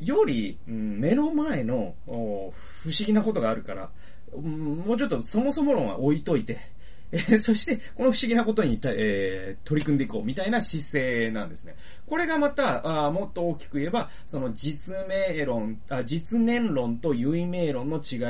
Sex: male